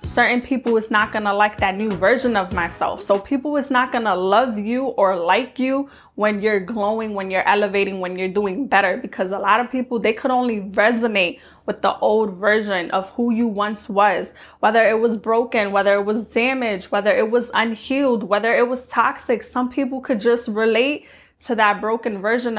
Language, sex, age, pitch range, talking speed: English, female, 20-39, 205-240 Hz, 200 wpm